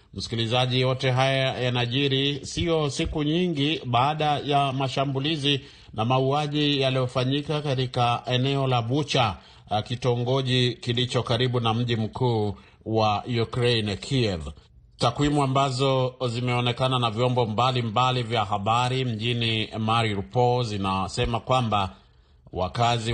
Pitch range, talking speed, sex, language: 115-135 Hz, 105 wpm, male, Swahili